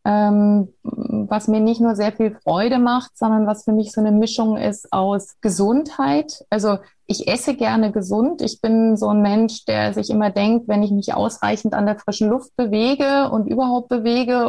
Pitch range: 195-235 Hz